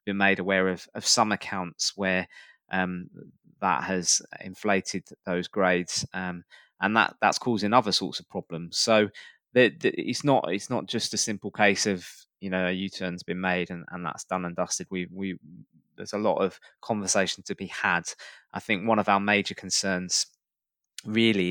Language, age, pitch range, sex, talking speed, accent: English, 20-39, 90-105 Hz, male, 180 wpm, British